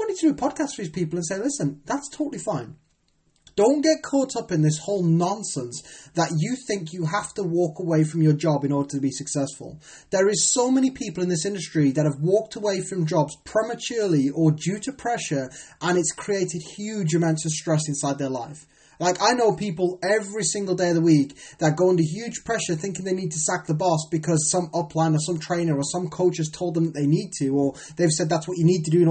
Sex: male